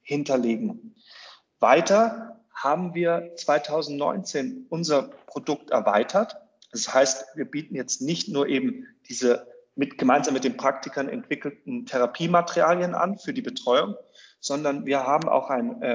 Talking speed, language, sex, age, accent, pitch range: 125 wpm, German, male, 30-49, German, 140-200 Hz